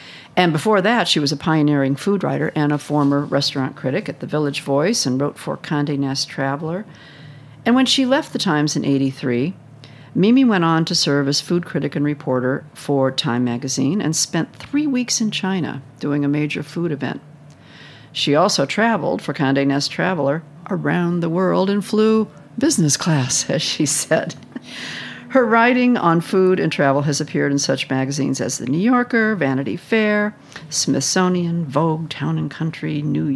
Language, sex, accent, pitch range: English, female, American, 140-180 Hz